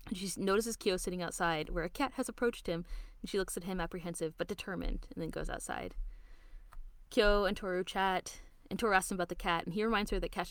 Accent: American